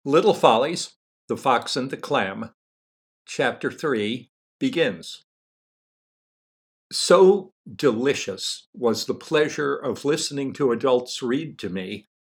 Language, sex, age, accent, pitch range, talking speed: English, male, 60-79, American, 125-190 Hz, 110 wpm